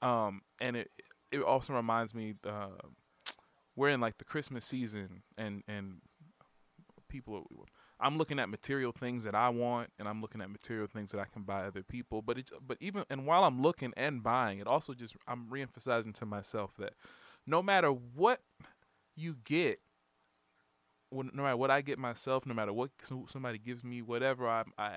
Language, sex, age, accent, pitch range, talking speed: English, male, 20-39, American, 105-135 Hz, 185 wpm